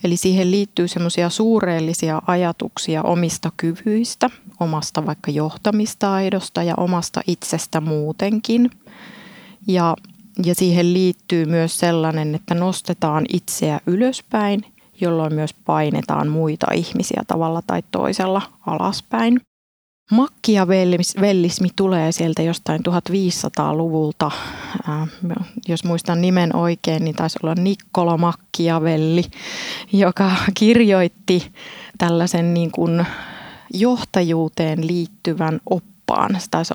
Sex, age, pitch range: female, 30-49, 165-200 Hz